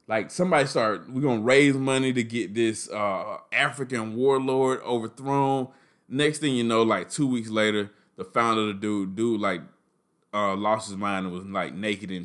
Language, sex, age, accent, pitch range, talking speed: English, male, 20-39, American, 110-185 Hz, 190 wpm